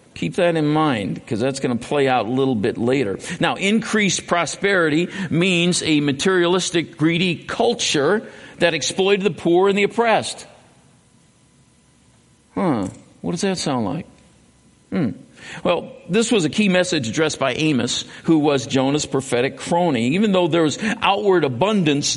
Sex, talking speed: male, 150 wpm